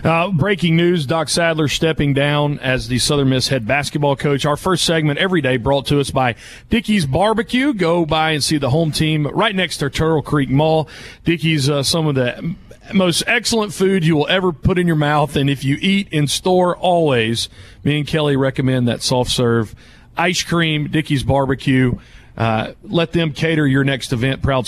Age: 40-59